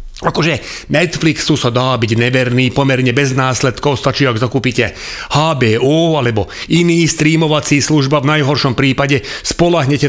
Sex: male